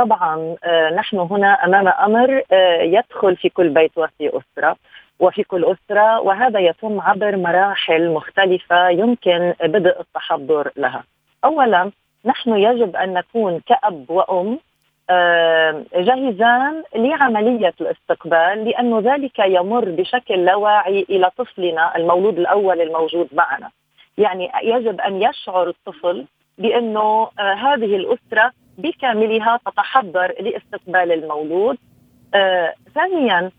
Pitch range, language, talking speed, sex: 180-235 Hz, Arabic, 100 wpm, female